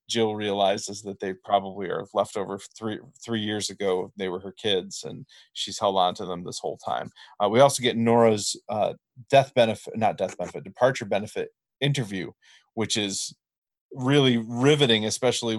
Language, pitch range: English, 110-135 Hz